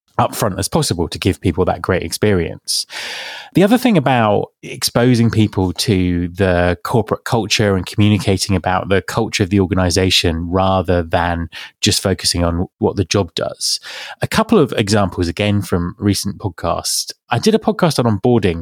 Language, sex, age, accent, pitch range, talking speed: English, male, 20-39, British, 90-115 Hz, 160 wpm